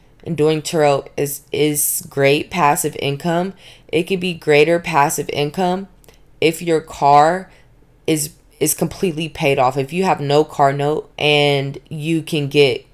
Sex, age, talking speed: female, 20-39, 150 wpm